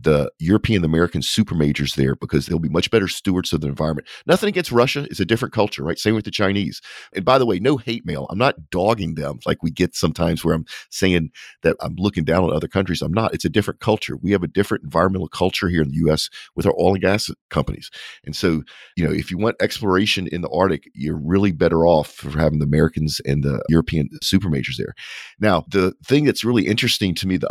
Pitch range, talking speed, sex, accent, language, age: 75-100 Hz, 235 wpm, male, American, English, 50-69